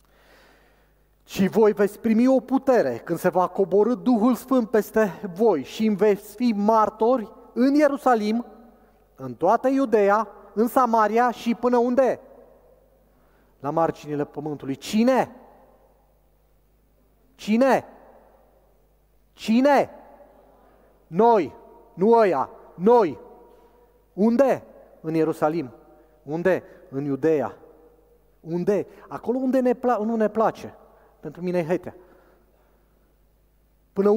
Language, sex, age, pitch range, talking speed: Romanian, male, 30-49, 145-225 Hz, 105 wpm